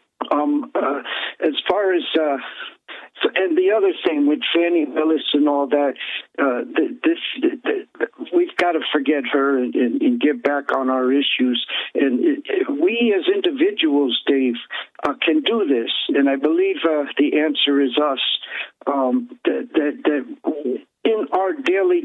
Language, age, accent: English, 60-79, American